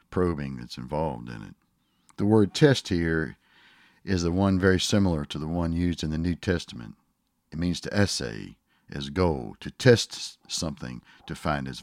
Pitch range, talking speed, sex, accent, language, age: 70-95 Hz, 170 wpm, male, American, English, 60-79